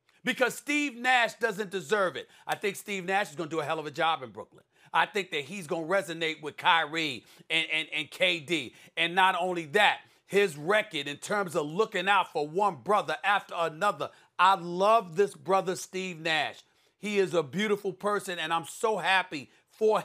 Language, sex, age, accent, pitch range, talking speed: English, male, 40-59, American, 185-255 Hz, 200 wpm